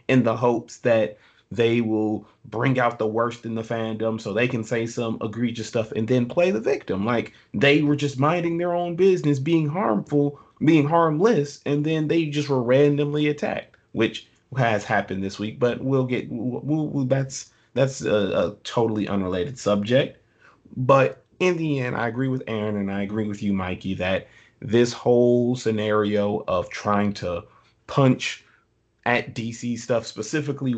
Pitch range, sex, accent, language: 110-145 Hz, male, American, English